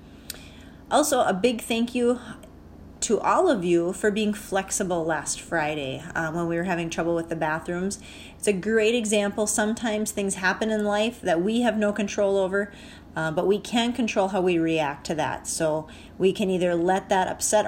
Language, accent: English, American